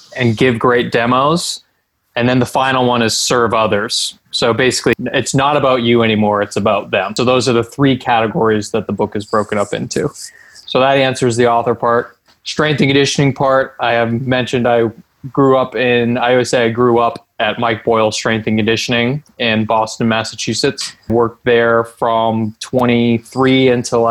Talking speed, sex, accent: 180 wpm, male, American